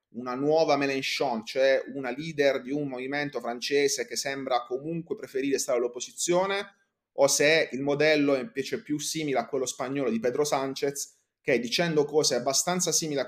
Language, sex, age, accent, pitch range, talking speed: Italian, male, 30-49, native, 130-165 Hz, 165 wpm